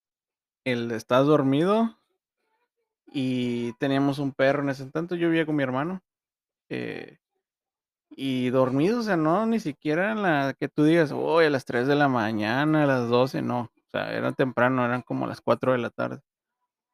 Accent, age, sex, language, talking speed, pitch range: Mexican, 20-39, male, Spanish, 185 wpm, 125-170 Hz